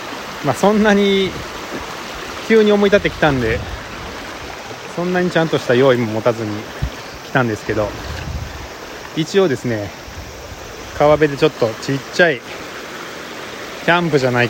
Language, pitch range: Japanese, 115-190 Hz